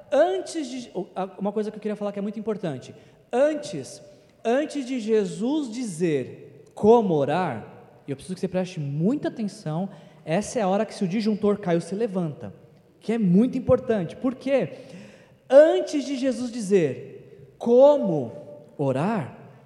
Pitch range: 185-255 Hz